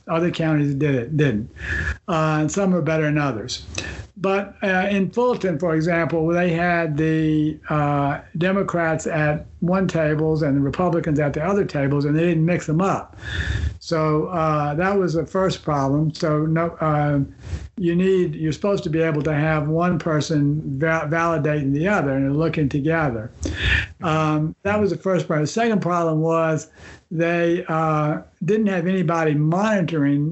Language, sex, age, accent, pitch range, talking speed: English, male, 60-79, American, 145-175 Hz, 165 wpm